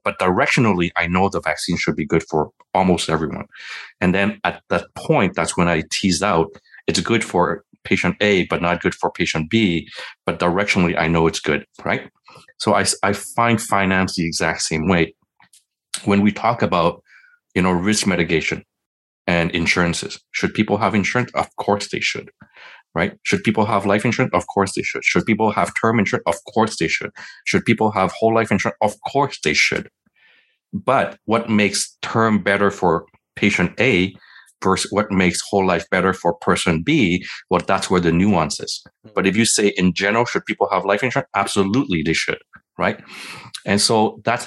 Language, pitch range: English, 85-110 Hz